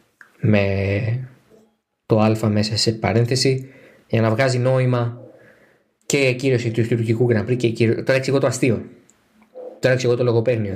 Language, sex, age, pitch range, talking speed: Greek, male, 20-39, 115-180 Hz, 140 wpm